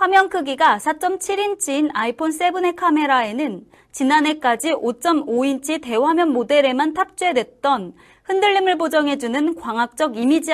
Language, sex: Korean, female